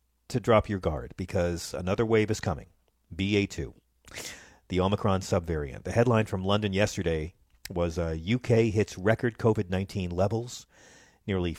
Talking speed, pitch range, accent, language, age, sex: 140 wpm, 90-120 Hz, American, English, 40-59, male